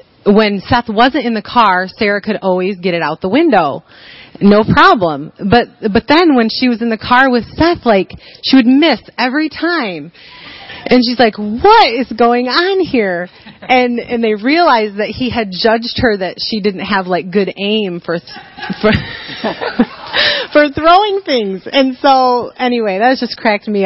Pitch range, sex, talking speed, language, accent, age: 180-235 Hz, female, 175 wpm, English, American, 30-49